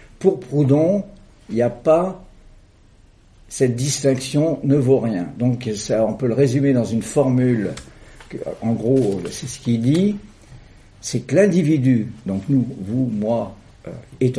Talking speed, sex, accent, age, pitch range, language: 155 wpm, male, French, 60-79, 110-140 Hz, French